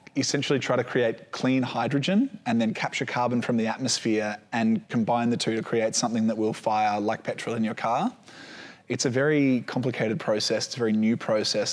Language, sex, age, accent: English, male, 20-39, Australian